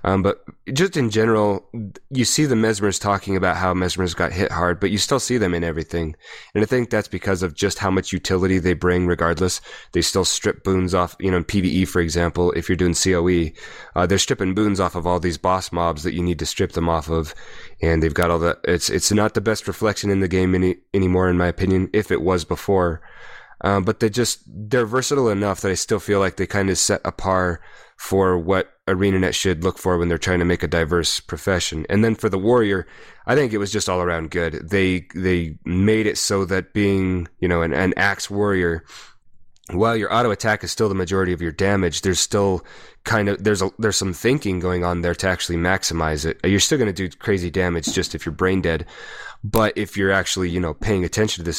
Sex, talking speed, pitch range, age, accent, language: male, 235 wpm, 85-100 Hz, 20-39, American, English